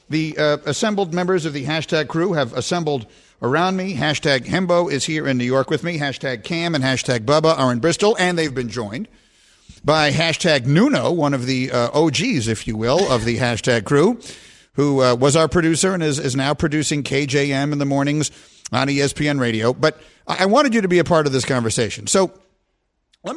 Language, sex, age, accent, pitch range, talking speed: English, male, 50-69, American, 125-165 Hz, 200 wpm